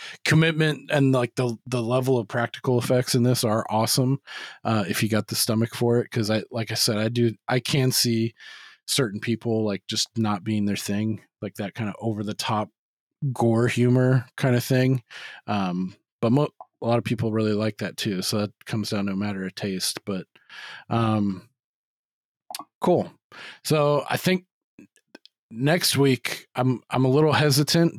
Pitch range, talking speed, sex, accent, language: 110-135 Hz, 180 wpm, male, American, English